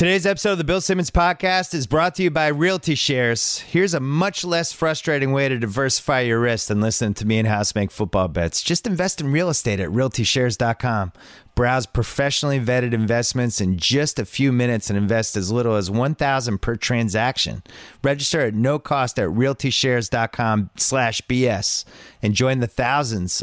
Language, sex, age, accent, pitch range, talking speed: English, male, 30-49, American, 100-130 Hz, 175 wpm